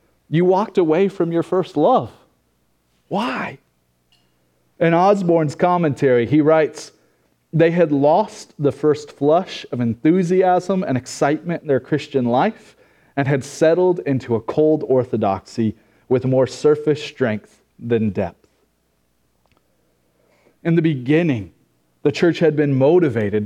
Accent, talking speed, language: American, 125 wpm, English